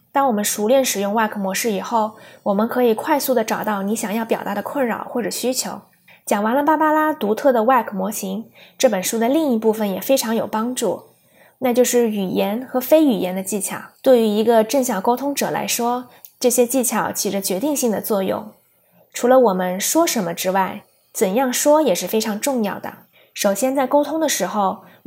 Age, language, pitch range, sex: 20-39, Chinese, 205-260 Hz, female